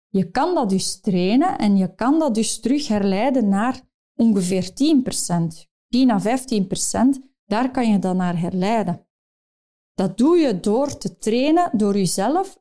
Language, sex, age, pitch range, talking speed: Dutch, female, 30-49, 195-255 Hz, 150 wpm